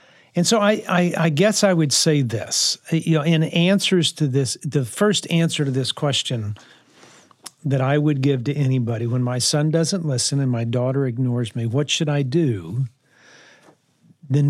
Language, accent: English, American